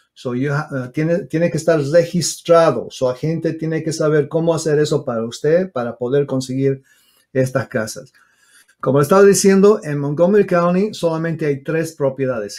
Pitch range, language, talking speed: 130-165 Hz, English, 160 wpm